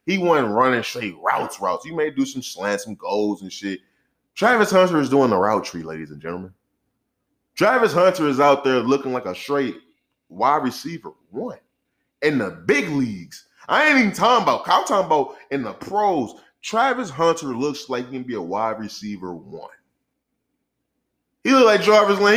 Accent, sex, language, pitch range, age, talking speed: American, male, English, 130-195 Hz, 20-39, 180 wpm